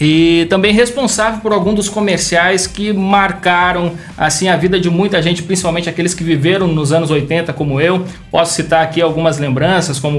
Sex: male